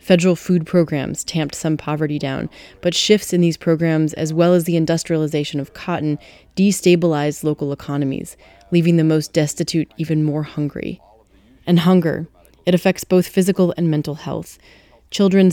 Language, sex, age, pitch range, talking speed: English, female, 30-49, 150-175 Hz, 150 wpm